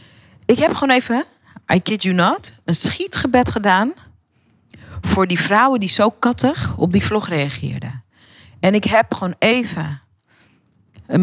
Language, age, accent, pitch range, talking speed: Dutch, 40-59, Dutch, 150-215 Hz, 145 wpm